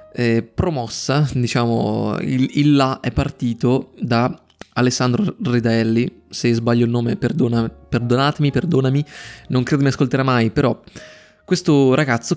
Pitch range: 115-140 Hz